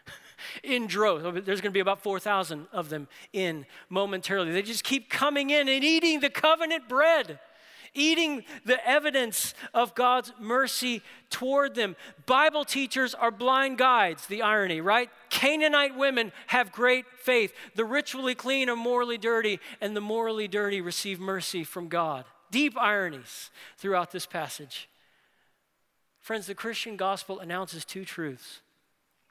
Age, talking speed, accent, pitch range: 40-59, 140 wpm, American, 155-235 Hz